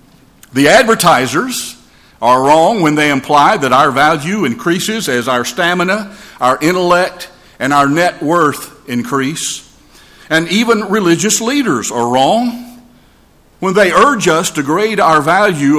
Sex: male